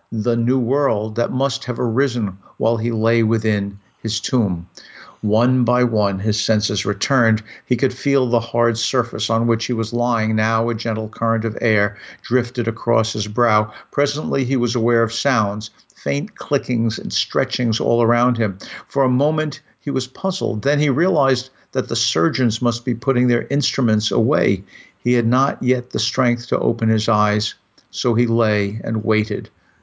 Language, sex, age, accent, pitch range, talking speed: English, male, 50-69, American, 110-125 Hz, 175 wpm